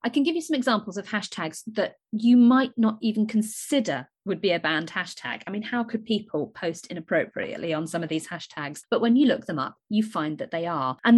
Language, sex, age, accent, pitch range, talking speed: English, female, 30-49, British, 165-235 Hz, 230 wpm